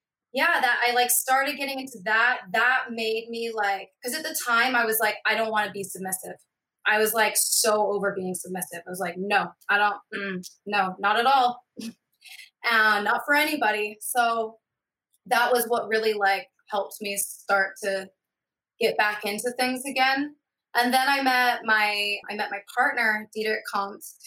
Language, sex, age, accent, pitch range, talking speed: English, female, 20-39, American, 195-230 Hz, 185 wpm